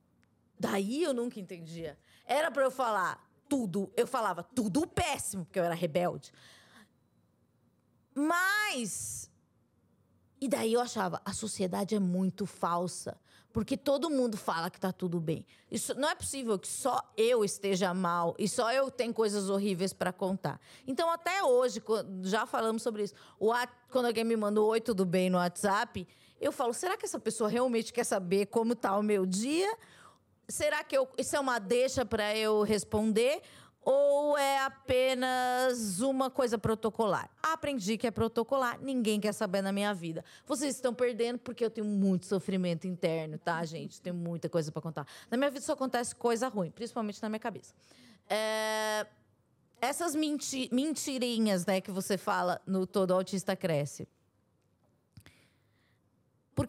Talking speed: 155 wpm